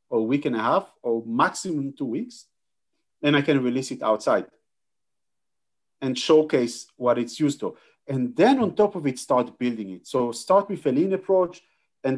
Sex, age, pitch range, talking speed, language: male, 40-59, 125-155 Hz, 185 wpm, English